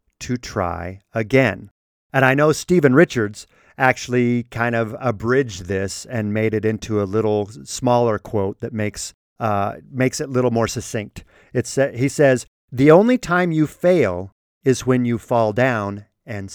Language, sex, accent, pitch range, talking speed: English, male, American, 105-155 Hz, 160 wpm